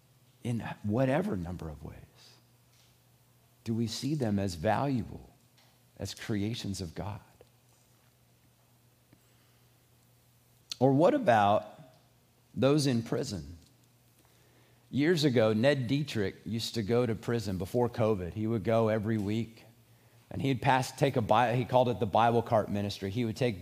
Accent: American